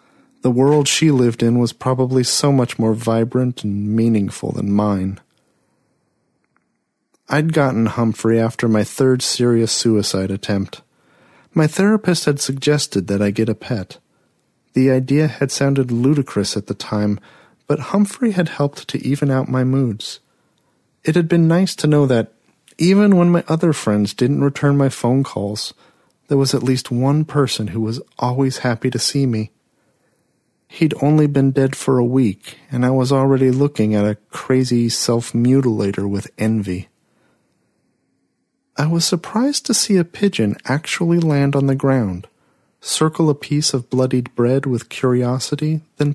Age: 40-59